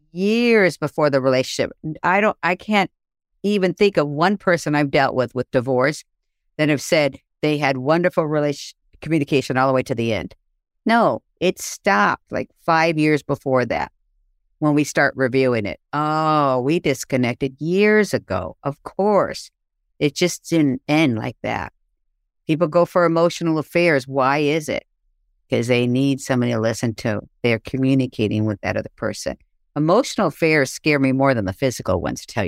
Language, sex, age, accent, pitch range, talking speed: English, female, 50-69, American, 135-195 Hz, 165 wpm